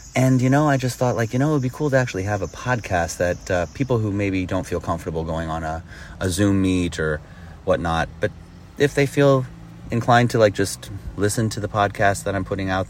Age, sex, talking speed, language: 30-49, male, 235 wpm, English